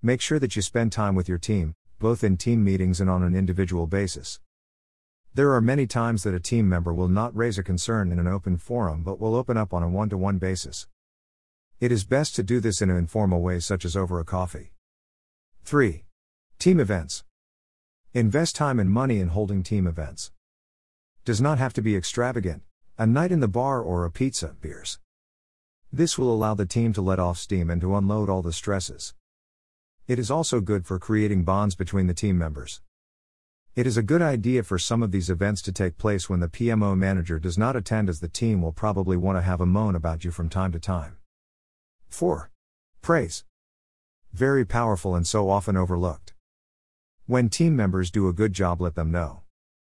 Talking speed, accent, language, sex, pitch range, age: 195 wpm, American, English, male, 85-110 Hz, 50-69